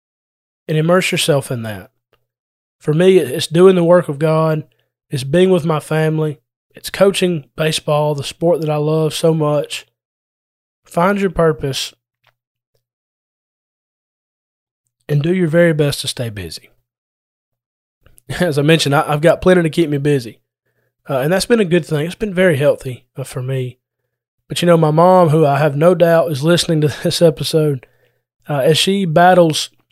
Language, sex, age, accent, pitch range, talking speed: English, male, 20-39, American, 140-175 Hz, 160 wpm